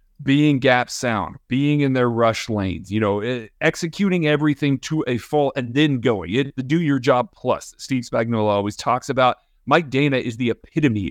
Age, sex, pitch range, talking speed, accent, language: 40-59, male, 120-155 Hz, 180 wpm, American, English